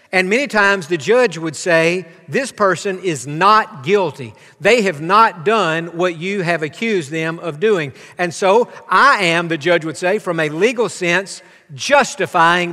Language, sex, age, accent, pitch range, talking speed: English, male, 50-69, American, 170-230 Hz, 170 wpm